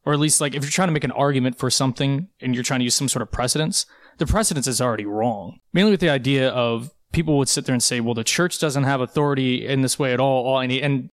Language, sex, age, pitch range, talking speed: English, male, 20-39, 125-155 Hz, 285 wpm